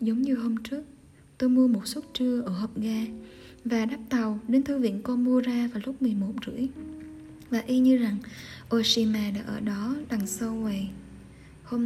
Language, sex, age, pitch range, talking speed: Vietnamese, female, 20-39, 215-245 Hz, 175 wpm